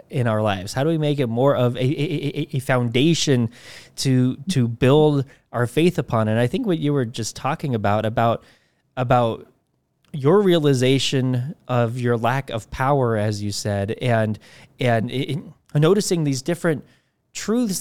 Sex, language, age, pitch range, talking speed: male, English, 20-39, 120-150 Hz, 160 wpm